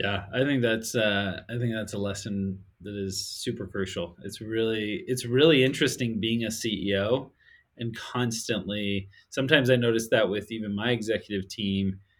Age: 30-49